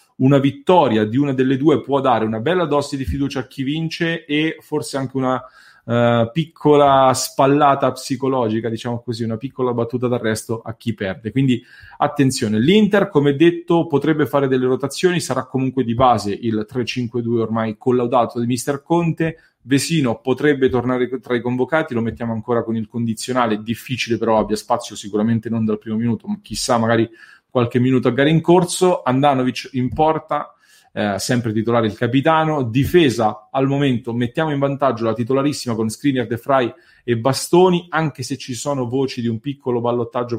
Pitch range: 115-140 Hz